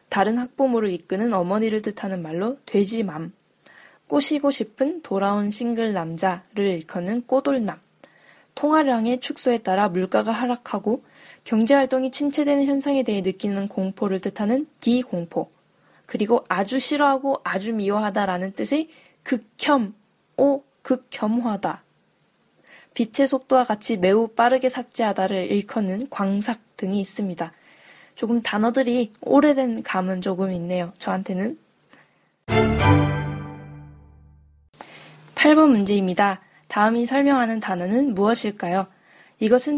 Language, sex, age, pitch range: Korean, female, 10-29, 195-260 Hz